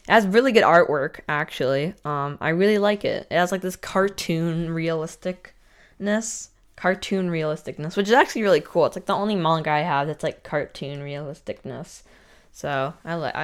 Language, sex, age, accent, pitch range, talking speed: English, female, 20-39, American, 165-215 Hz, 170 wpm